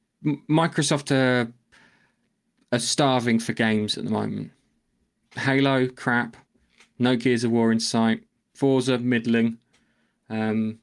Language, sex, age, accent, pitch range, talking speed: English, male, 20-39, British, 115-130 Hz, 110 wpm